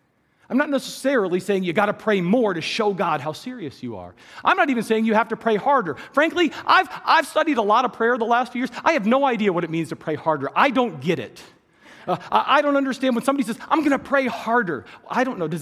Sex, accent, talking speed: male, American, 255 wpm